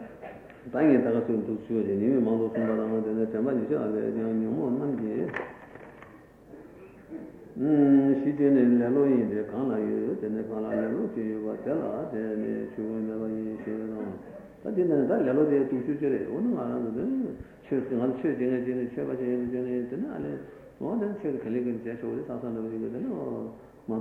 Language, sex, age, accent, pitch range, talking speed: Italian, male, 60-79, Indian, 110-130 Hz, 125 wpm